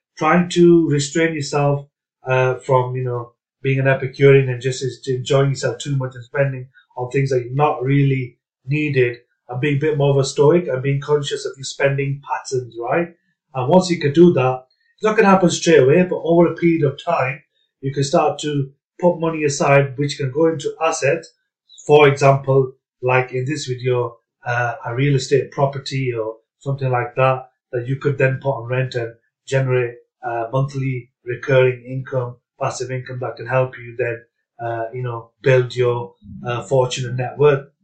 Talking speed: 185 wpm